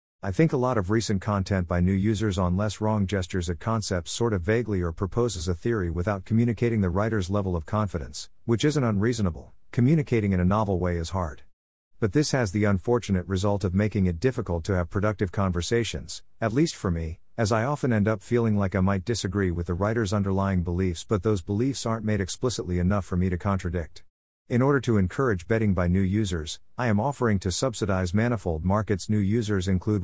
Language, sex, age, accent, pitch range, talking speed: English, male, 50-69, American, 90-115 Hz, 205 wpm